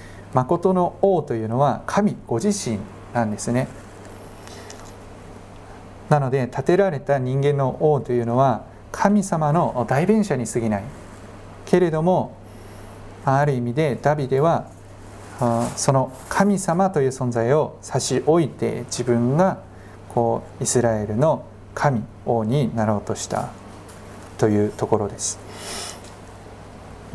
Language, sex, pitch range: Japanese, male, 105-140 Hz